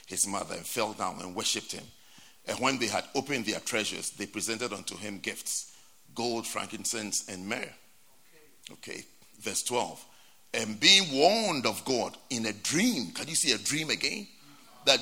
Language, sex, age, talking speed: English, male, 50-69, 170 wpm